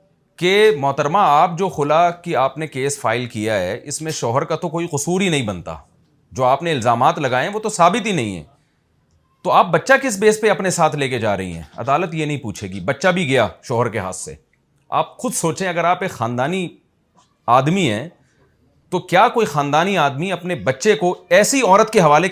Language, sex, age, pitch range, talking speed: Urdu, male, 40-59, 145-200 Hz, 210 wpm